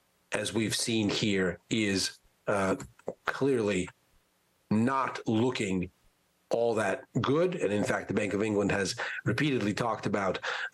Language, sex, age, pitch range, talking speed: English, male, 40-59, 90-125 Hz, 130 wpm